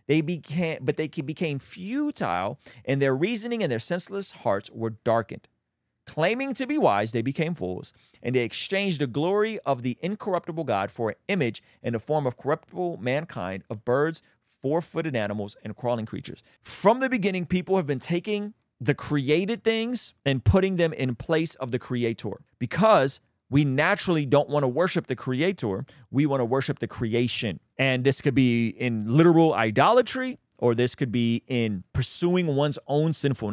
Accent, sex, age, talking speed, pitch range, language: American, male, 30-49, 170 wpm, 125-185 Hz, English